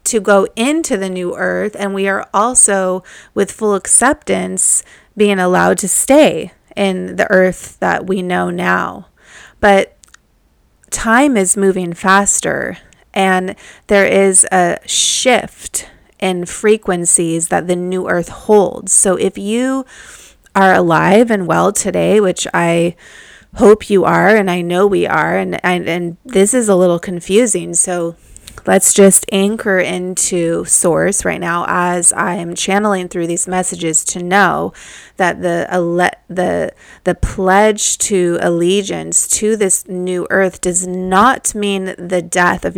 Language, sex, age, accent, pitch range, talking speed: English, female, 30-49, American, 175-200 Hz, 140 wpm